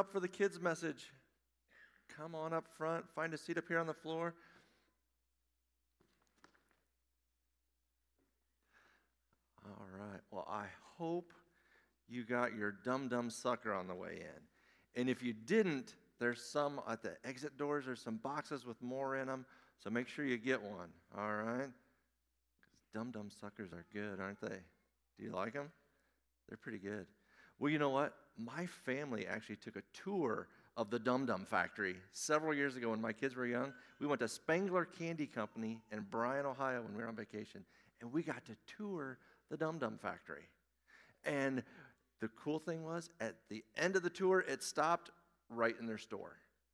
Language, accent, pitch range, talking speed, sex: English, American, 105-155 Hz, 170 wpm, male